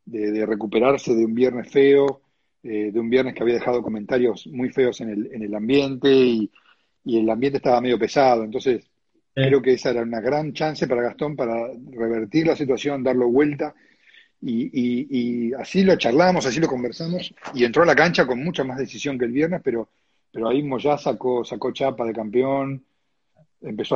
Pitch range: 115-140 Hz